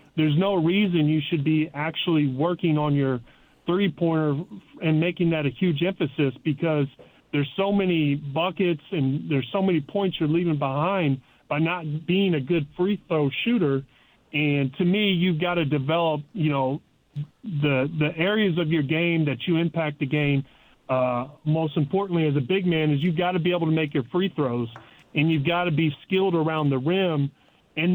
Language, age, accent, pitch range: English, 40-59, American, 150-175 Hz